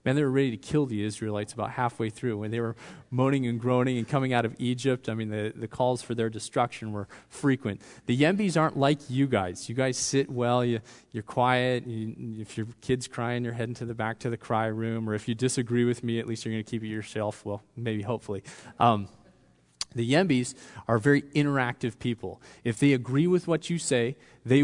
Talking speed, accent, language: 220 wpm, American, English